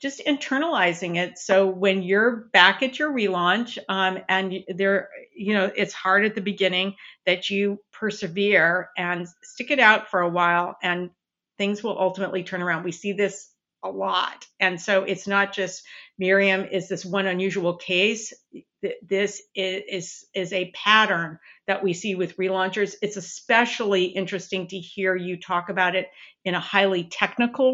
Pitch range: 185-220 Hz